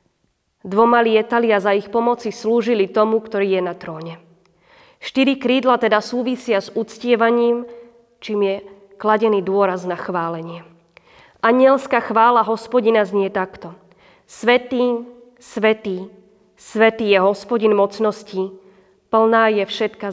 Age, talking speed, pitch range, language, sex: 20-39, 110 wpm, 195-235 Hz, Slovak, female